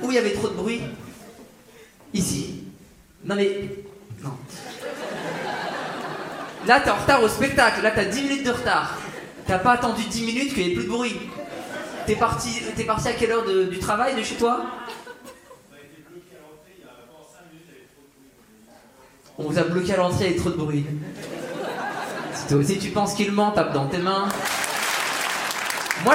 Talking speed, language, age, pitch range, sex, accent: 180 wpm, French, 20-39, 185-245 Hz, male, French